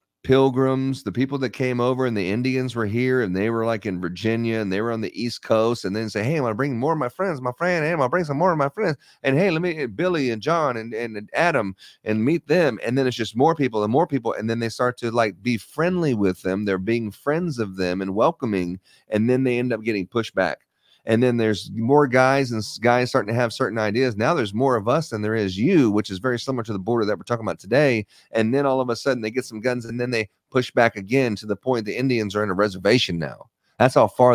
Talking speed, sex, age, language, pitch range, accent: 270 wpm, male, 30-49, English, 105-130 Hz, American